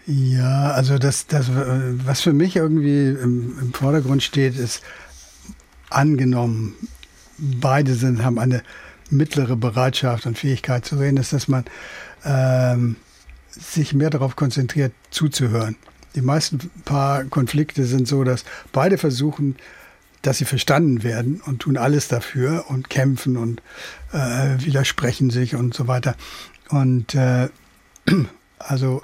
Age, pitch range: 60-79, 125-145 Hz